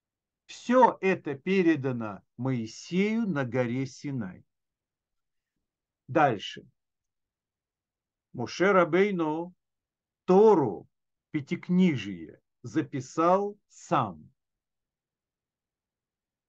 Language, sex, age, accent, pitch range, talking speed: Russian, male, 50-69, native, 130-190 Hz, 50 wpm